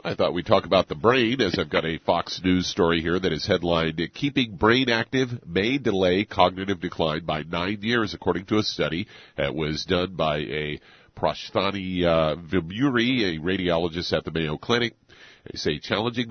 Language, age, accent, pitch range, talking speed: English, 50-69, American, 80-105 Hz, 180 wpm